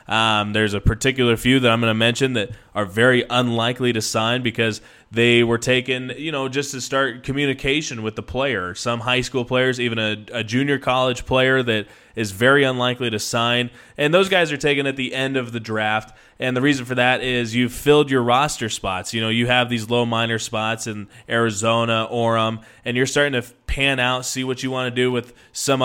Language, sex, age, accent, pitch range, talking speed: English, male, 20-39, American, 115-135 Hz, 215 wpm